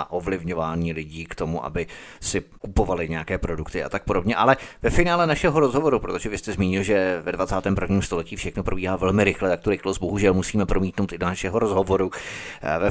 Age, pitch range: 30-49, 95-115 Hz